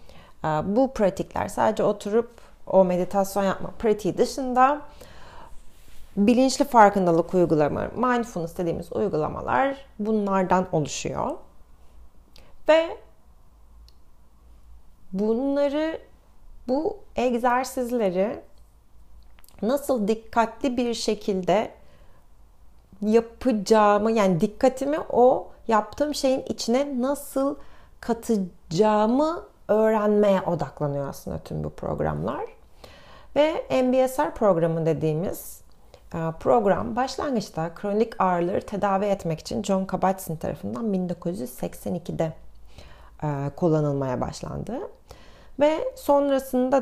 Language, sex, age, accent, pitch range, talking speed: Turkish, female, 40-59, native, 155-245 Hz, 75 wpm